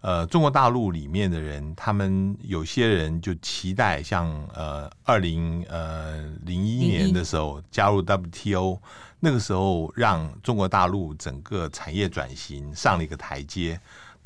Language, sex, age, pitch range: Chinese, male, 60-79, 80-105 Hz